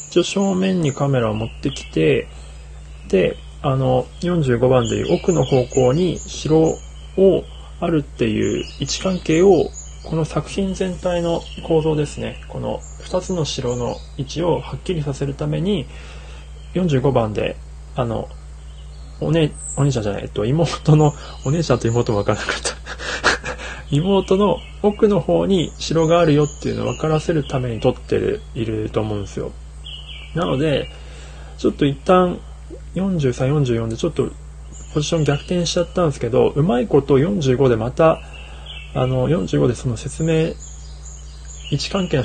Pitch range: 115-165 Hz